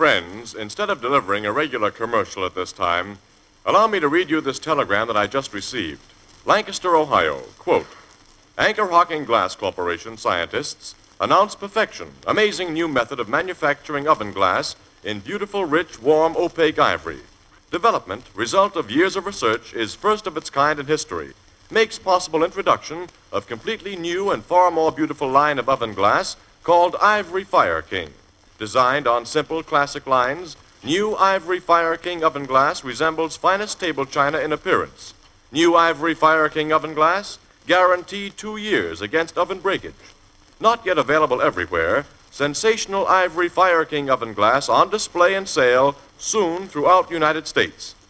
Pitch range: 140-190 Hz